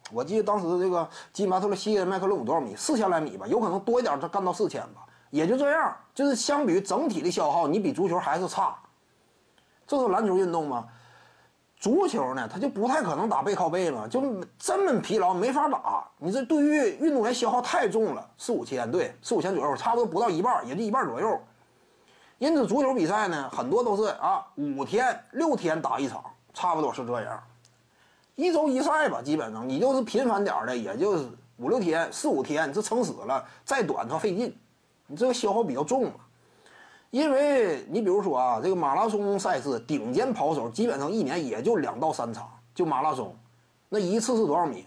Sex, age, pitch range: male, 30-49, 185-285 Hz